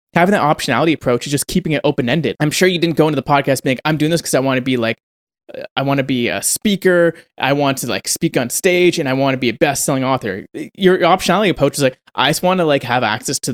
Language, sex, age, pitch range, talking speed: English, male, 20-39, 125-160 Hz, 275 wpm